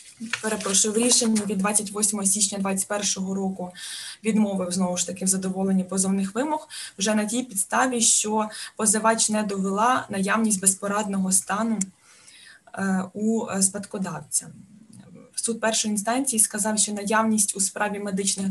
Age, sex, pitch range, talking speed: 20-39, female, 190-220 Hz, 120 wpm